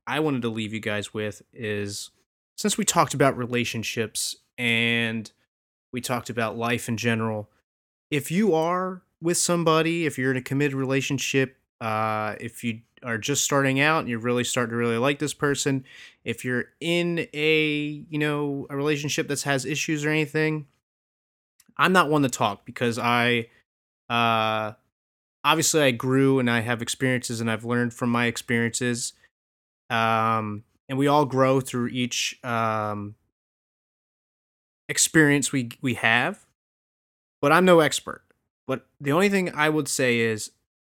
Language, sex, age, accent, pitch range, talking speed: English, male, 30-49, American, 115-145 Hz, 155 wpm